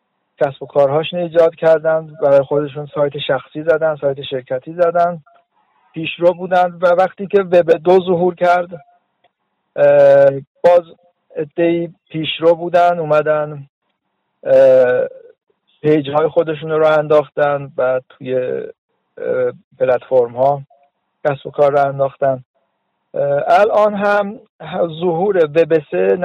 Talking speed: 110 wpm